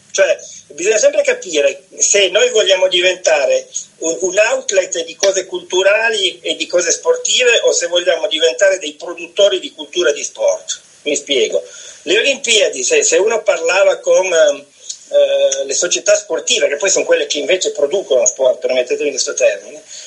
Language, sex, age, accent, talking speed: Italian, male, 40-59, native, 150 wpm